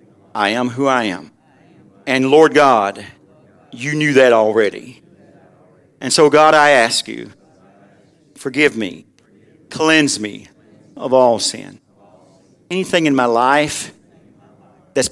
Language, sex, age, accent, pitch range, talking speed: English, male, 50-69, American, 125-155 Hz, 120 wpm